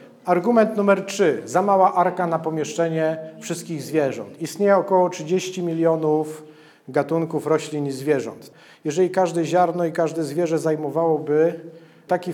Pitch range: 145-185 Hz